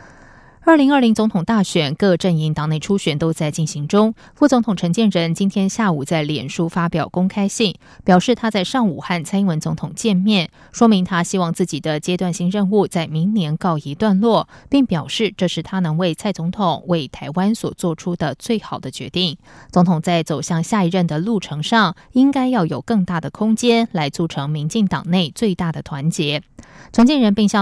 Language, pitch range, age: German, 160-205 Hz, 20-39